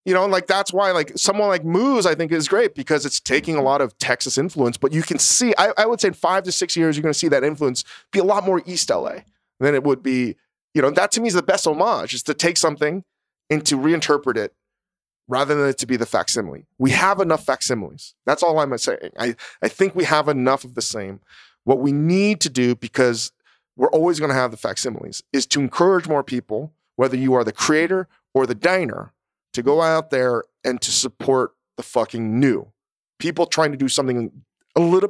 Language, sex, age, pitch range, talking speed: English, male, 30-49, 135-190 Hz, 230 wpm